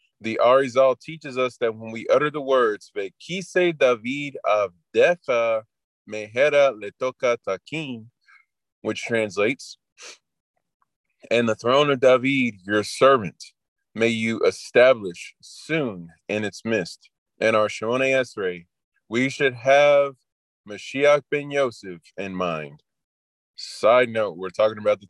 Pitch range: 105-140 Hz